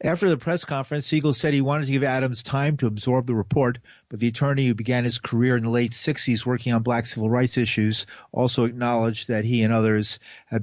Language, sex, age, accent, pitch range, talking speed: English, male, 50-69, American, 100-125 Hz, 225 wpm